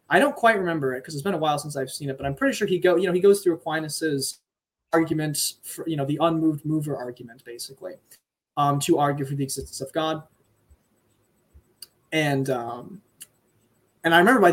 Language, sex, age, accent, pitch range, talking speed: English, male, 20-39, American, 135-175 Hz, 200 wpm